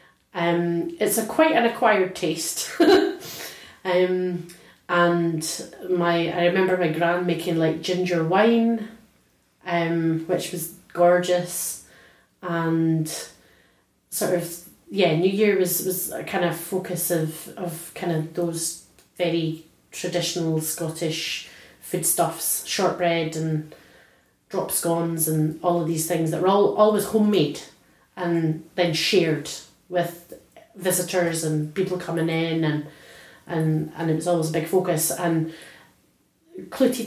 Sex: female